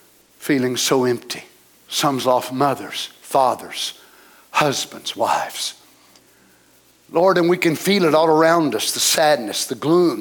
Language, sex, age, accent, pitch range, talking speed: English, male, 60-79, American, 125-155 Hz, 130 wpm